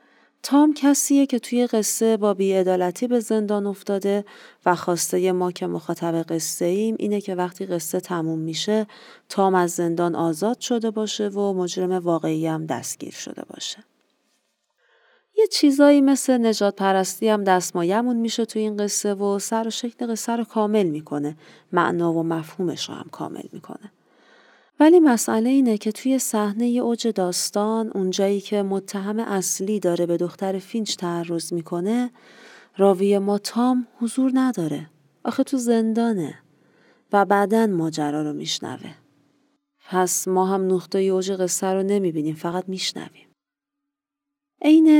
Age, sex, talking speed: 40-59, female, 140 wpm